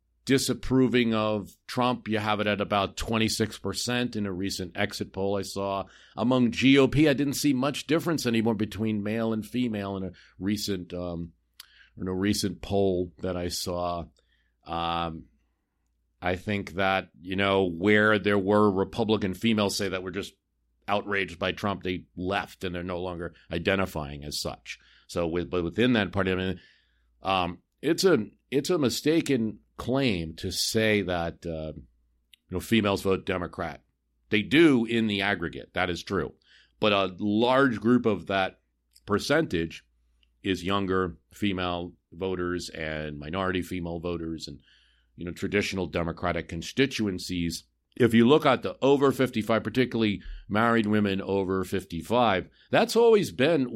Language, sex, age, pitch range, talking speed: English, male, 50-69, 85-110 Hz, 155 wpm